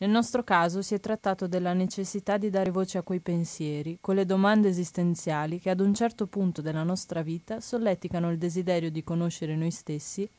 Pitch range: 165-200 Hz